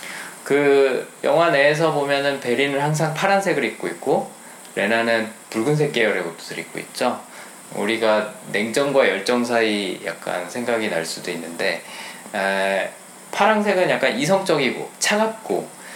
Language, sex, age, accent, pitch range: Korean, male, 20-39, native, 110-160 Hz